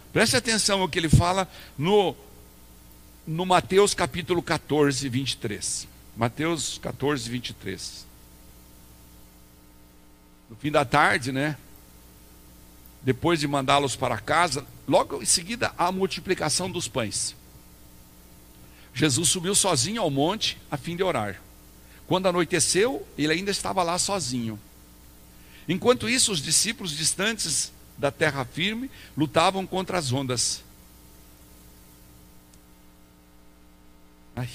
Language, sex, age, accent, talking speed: Portuguese, male, 60-79, Brazilian, 105 wpm